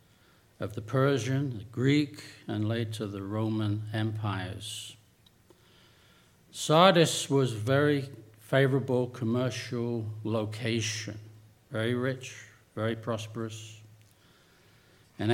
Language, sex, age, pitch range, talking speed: English, male, 60-79, 105-125 Hz, 85 wpm